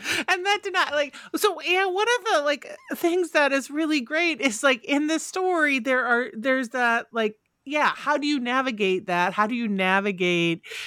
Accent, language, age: American, English, 40-59